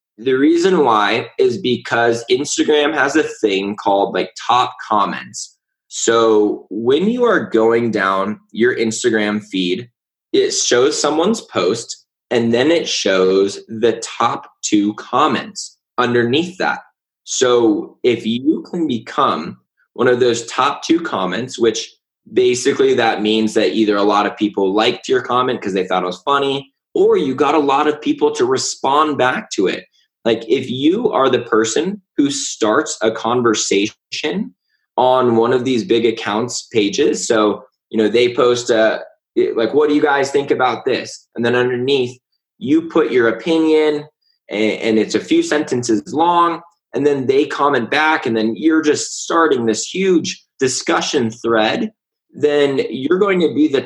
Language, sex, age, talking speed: English, male, 20-39, 160 wpm